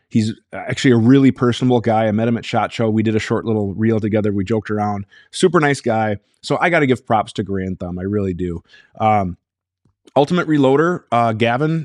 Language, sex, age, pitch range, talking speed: English, male, 20-39, 105-130 Hz, 215 wpm